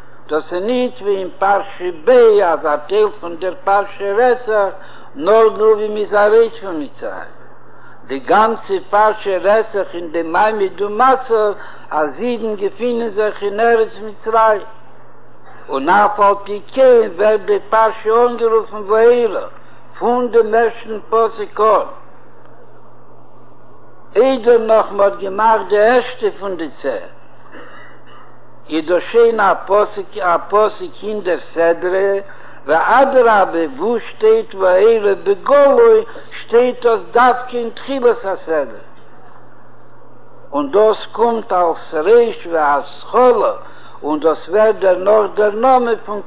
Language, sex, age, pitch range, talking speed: Hebrew, male, 60-79, 195-245 Hz, 95 wpm